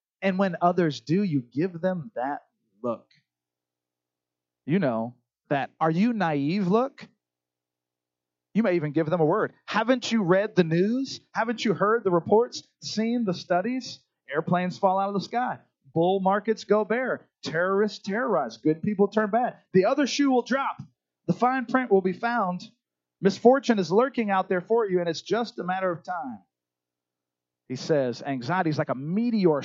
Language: English